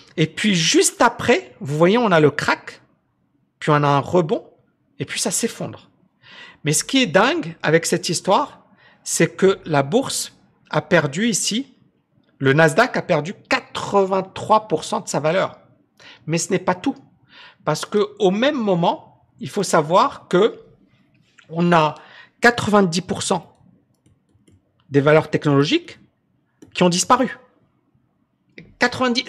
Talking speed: 135 wpm